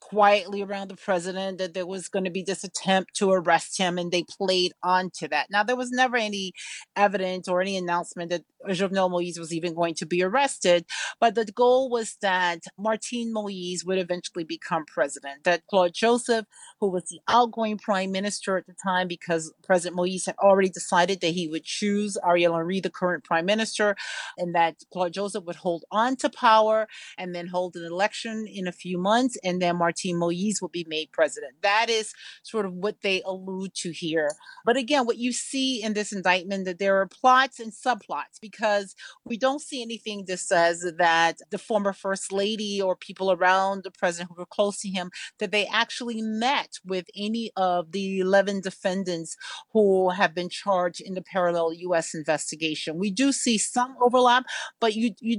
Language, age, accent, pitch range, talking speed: English, 40-59, American, 180-220 Hz, 190 wpm